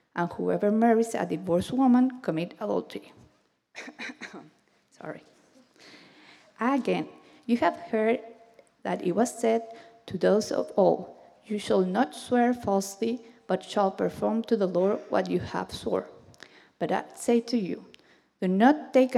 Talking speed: 140 wpm